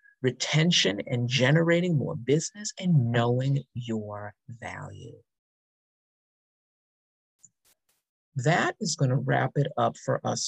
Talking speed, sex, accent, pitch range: 105 wpm, male, American, 115-155 Hz